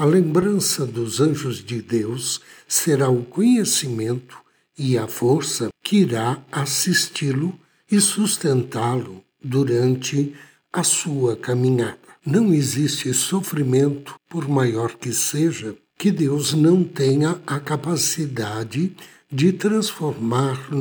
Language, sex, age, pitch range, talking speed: Portuguese, male, 60-79, 125-175 Hz, 105 wpm